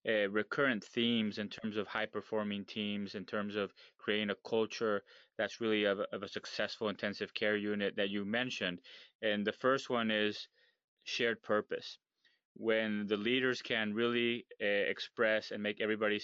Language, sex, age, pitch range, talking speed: English, male, 20-39, 100-110 Hz, 160 wpm